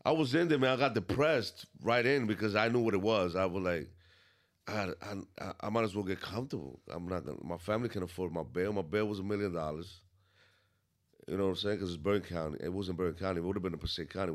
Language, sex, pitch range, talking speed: Spanish, male, 90-110 Hz, 260 wpm